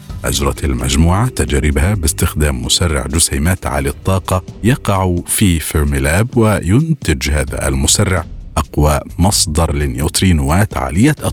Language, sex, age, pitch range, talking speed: Arabic, male, 50-69, 75-100 Hz, 95 wpm